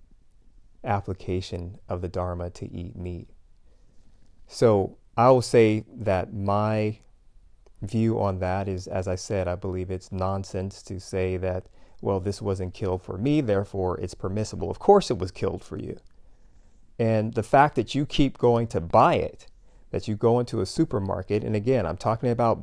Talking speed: 170 wpm